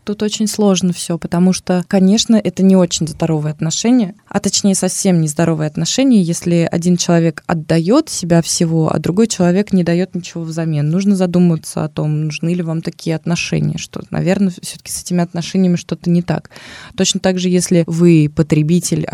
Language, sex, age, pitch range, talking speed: Russian, female, 20-39, 155-180 Hz, 170 wpm